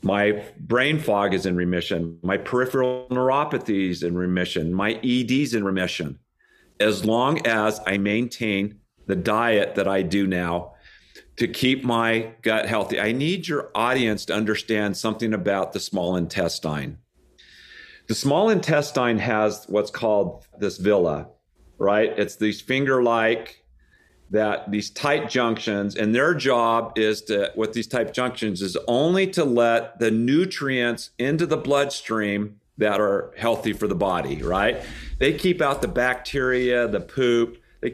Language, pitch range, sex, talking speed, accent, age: English, 105-135 Hz, male, 145 wpm, American, 50-69